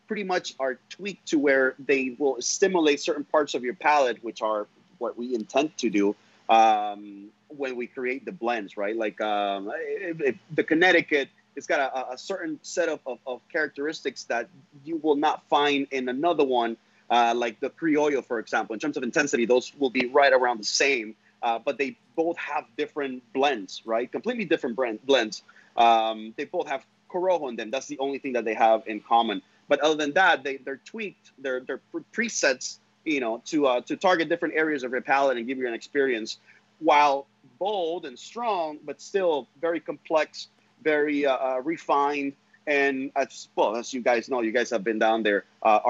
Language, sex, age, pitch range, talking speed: English, male, 30-49, 115-150 Hz, 190 wpm